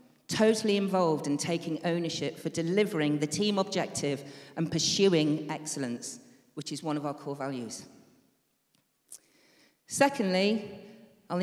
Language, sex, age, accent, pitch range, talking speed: English, female, 40-59, British, 155-205 Hz, 115 wpm